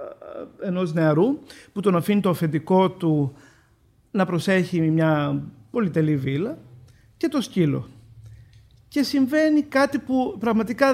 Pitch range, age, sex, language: 145-230 Hz, 50-69, male, Greek